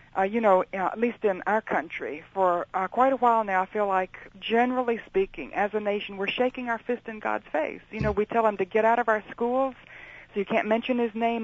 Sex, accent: female, American